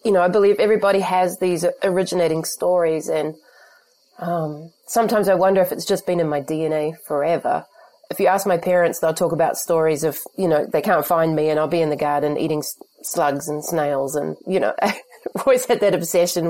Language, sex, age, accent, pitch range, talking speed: English, female, 30-49, Australian, 160-185 Hz, 205 wpm